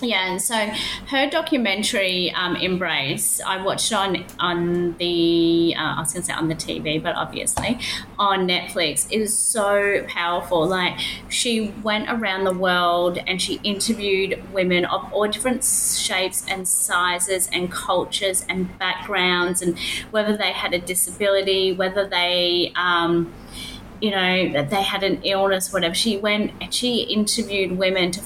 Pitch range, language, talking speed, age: 180-220 Hz, English, 150 wpm, 30-49